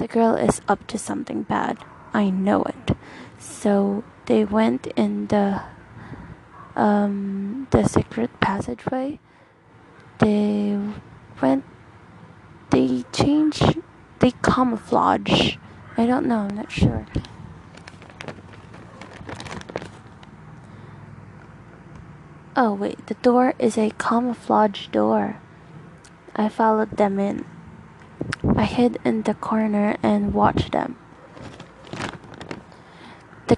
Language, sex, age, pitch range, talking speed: English, female, 20-39, 195-235 Hz, 95 wpm